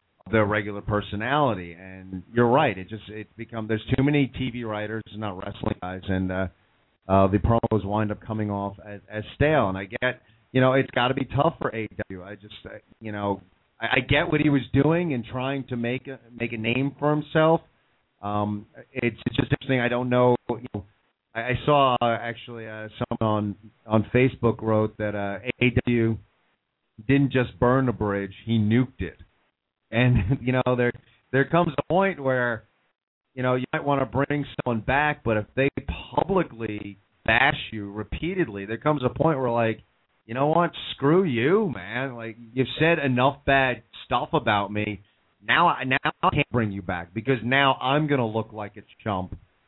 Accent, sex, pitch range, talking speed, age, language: American, male, 105-135 Hz, 190 wpm, 40-59, English